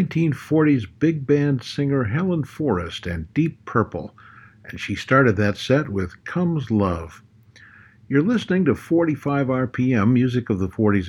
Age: 60-79